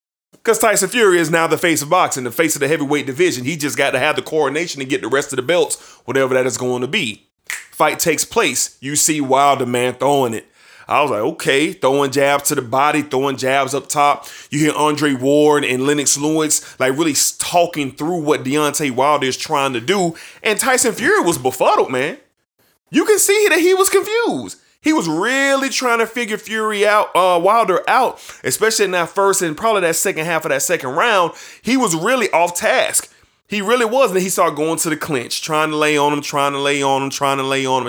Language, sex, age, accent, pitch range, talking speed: English, male, 20-39, American, 140-195 Hz, 225 wpm